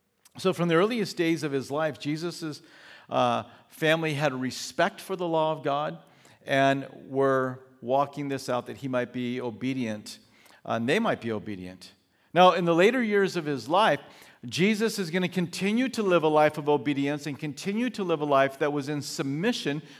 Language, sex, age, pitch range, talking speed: English, male, 50-69, 135-175 Hz, 185 wpm